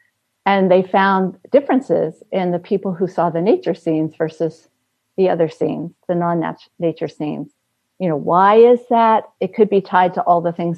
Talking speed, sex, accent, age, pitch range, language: 180 wpm, female, American, 50-69, 165-195 Hz, English